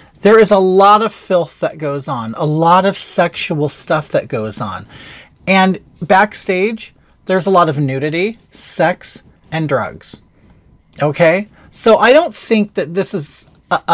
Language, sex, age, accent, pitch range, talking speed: Greek, male, 30-49, American, 135-190 Hz, 150 wpm